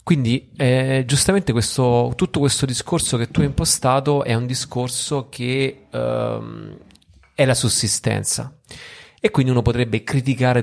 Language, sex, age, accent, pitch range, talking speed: Italian, male, 30-49, native, 105-135 Hz, 135 wpm